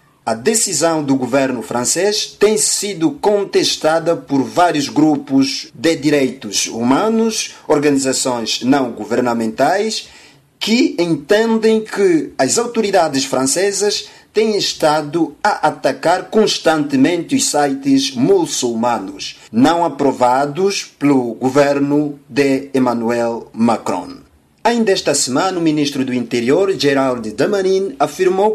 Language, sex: Portuguese, male